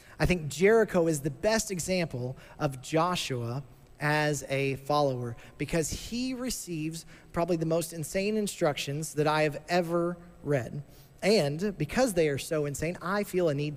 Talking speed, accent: 155 wpm, American